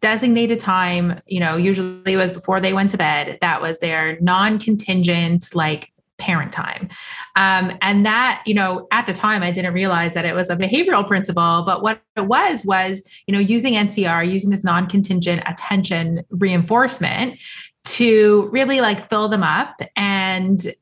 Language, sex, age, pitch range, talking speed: English, female, 20-39, 185-220 Hz, 165 wpm